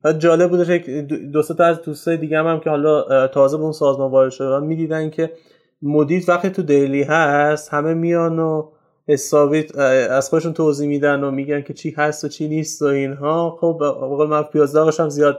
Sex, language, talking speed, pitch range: male, Persian, 170 wpm, 145-180 Hz